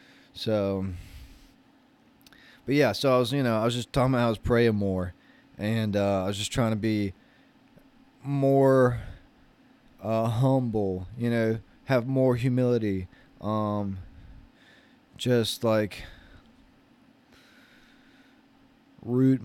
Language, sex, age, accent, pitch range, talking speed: English, male, 20-39, American, 100-130 Hz, 115 wpm